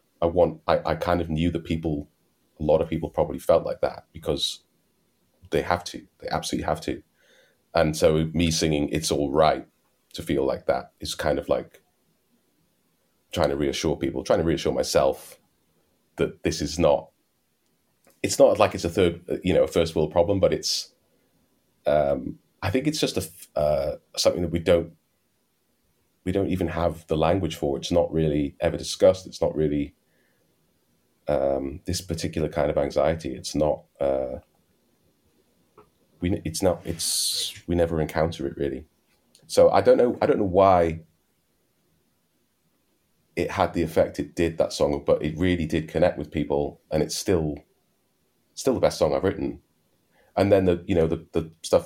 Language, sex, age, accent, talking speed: English, male, 30-49, British, 170 wpm